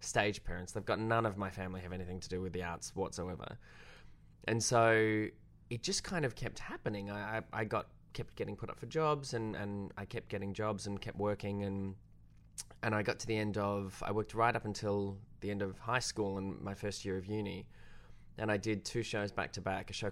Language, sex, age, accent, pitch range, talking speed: English, male, 20-39, Australian, 100-115 Hz, 225 wpm